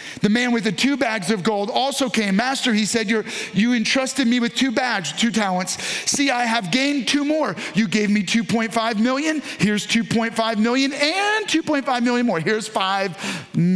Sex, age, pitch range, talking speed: male, 40-59, 185-245 Hz, 180 wpm